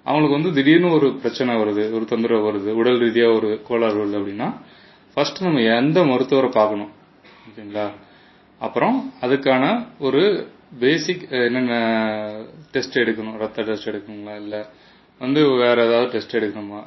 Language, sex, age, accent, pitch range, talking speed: Tamil, male, 30-49, native, 110-140 Hz, 125 wpm